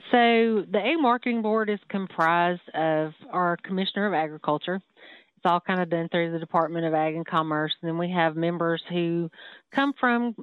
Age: 30-49